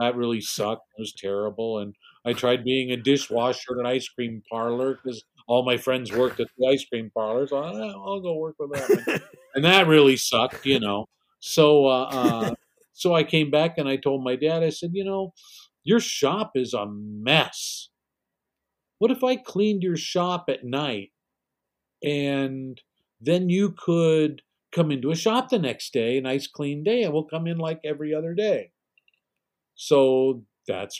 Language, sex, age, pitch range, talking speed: English, male, 50-69, 125-160 Hz, 180 wpm